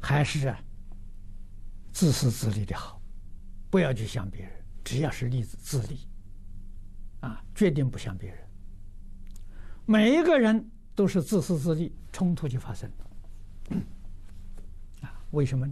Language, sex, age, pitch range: Chinese, male, 60-79, 95-145 Hz